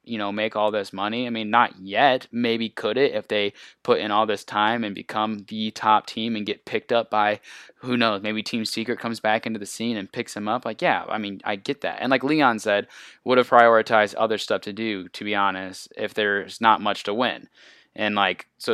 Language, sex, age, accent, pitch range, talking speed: English, male, 20-39, American, 100-115 Hz, 235 wpm